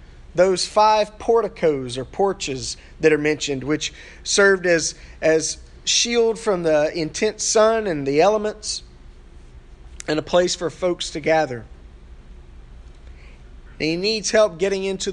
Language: English